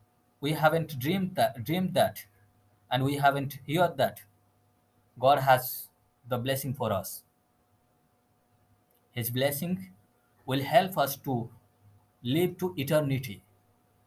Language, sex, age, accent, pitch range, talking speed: English, male, 20-39, Indian, 120-155 Hz, 105 wpm